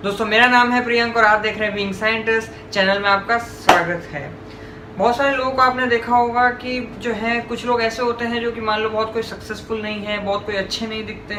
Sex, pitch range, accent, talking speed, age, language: female, 190-230 Hz, native, 240 wpm, 20-39, Hindi